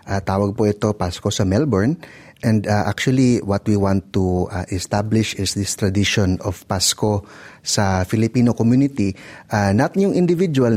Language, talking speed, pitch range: Filipino, 155 wpm, 90-110 Hz